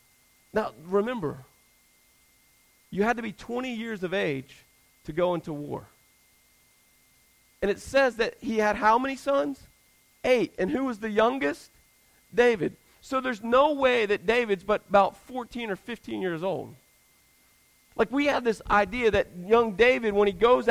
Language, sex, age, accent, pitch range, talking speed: English, male, 40-59, American, 195-245 Hz, 155 wpm